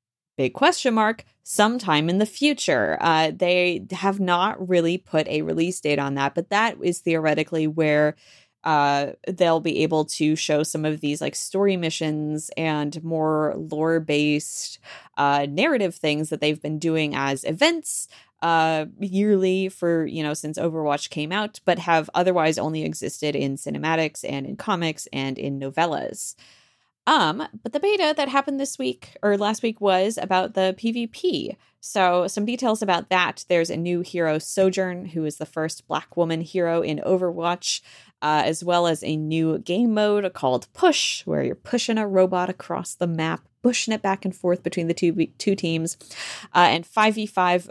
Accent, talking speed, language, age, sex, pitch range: American, 165 wpm, English, 20-39, female, 150-195 Hz